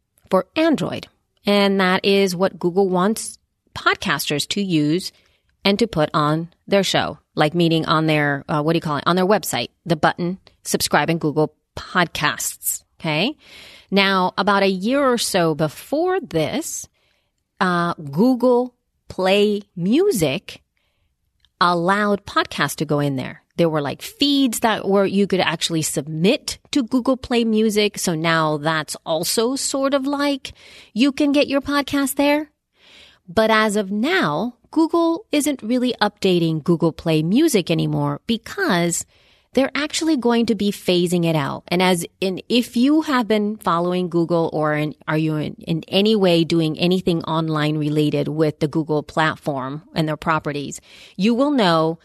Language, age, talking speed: English, 30-49, 155 wpm